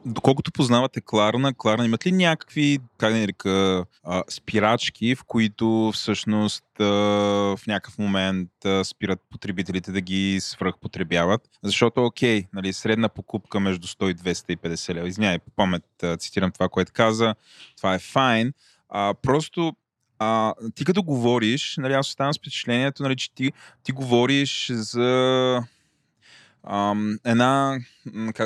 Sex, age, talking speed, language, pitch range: male, 20-39, 135 wpm, Bulgarian, 105-135 Hz